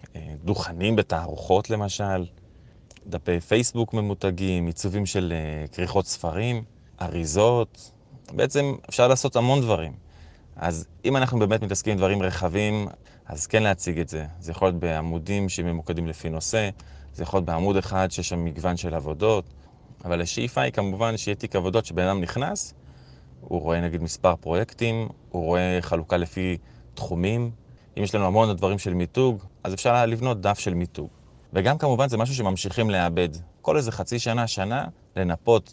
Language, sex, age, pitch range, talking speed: Hebrew, male, 20-39, 85-115 Hz, 155 wpm